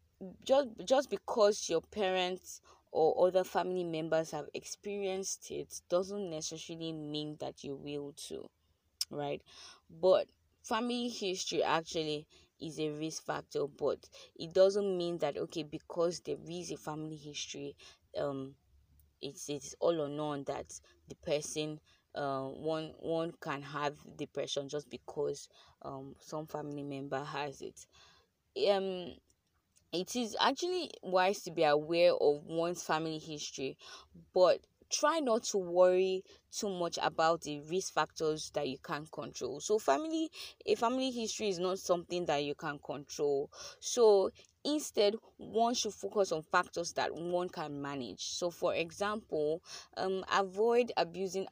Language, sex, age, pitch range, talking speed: English, female, 20-39, 145-195 Hz, 140 wpm